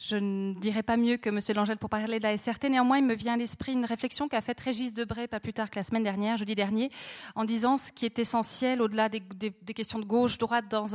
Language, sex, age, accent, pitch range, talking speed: French, female, 30-49, French, 215-260 Hz, 250 wpm